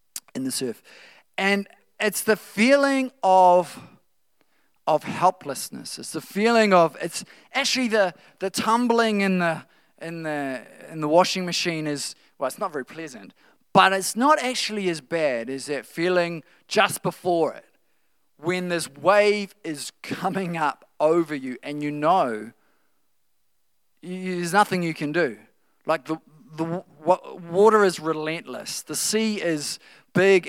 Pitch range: 150-195 Hz